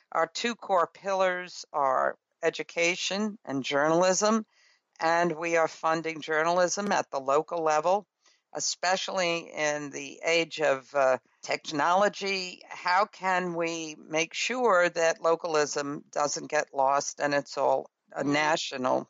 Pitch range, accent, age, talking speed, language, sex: 150-180 Hz, American, 60-79, 125 wpm, English, female